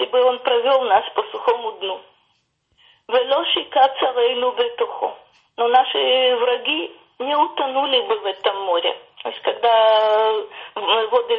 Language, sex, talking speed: Russian, female, 110 wpm